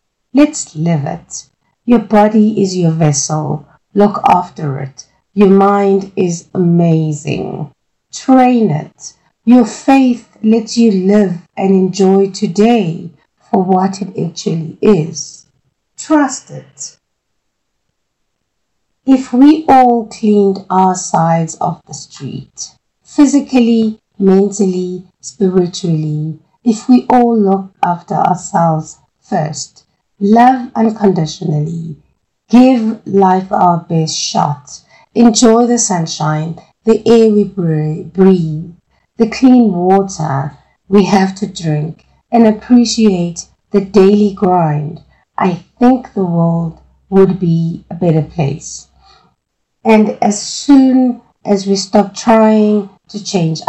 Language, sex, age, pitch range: English, female, 50-69, 165-220 Hz